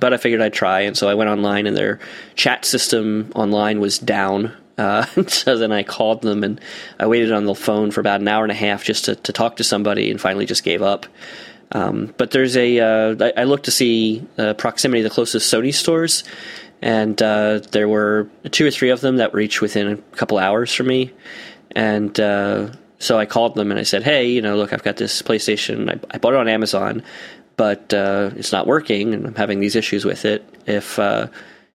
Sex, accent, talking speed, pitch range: male, American, 220 wpm, 105-115 Hz